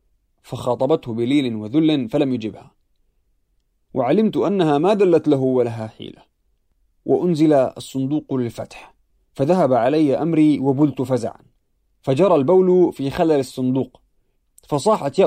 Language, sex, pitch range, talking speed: Arabic, male, 130-175 Hz, 105 wpm